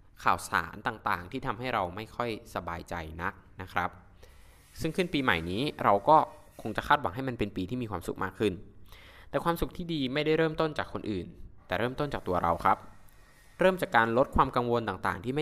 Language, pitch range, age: Thai, 90-125 Hz, 20-39